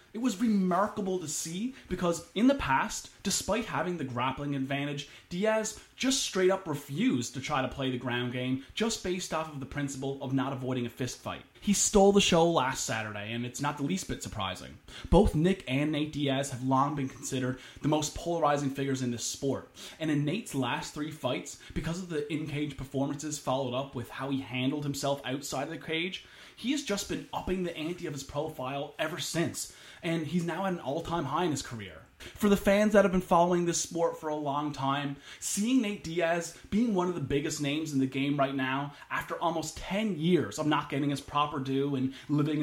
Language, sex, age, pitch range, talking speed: English, male, 20-39, 135-175 Hz, 210 wpm